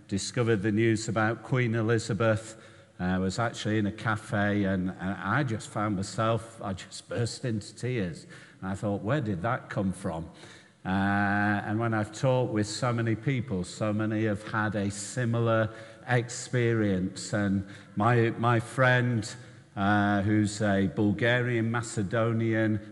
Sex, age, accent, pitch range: male, 50-69, British, 100-115 Hz